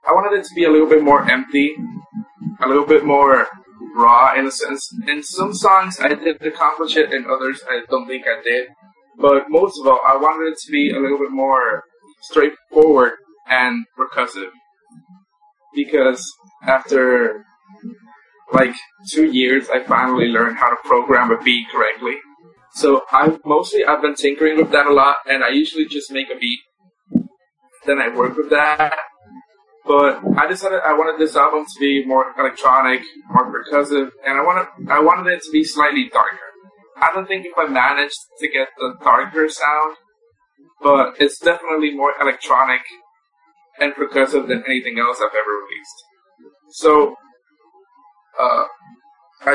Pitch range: 140-210 Hz